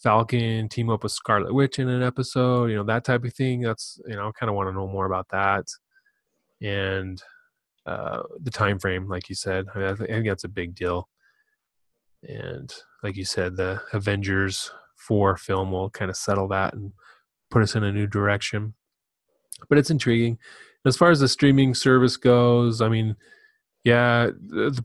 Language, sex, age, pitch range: English, male, 20-39, 100-120 Hz